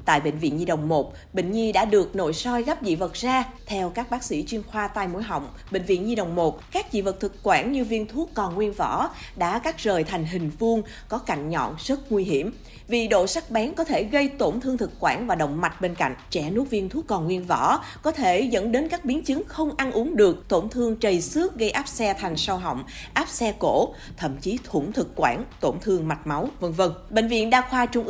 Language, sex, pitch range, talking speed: Vietnamese, female, 190-255 Hz, 250 wpm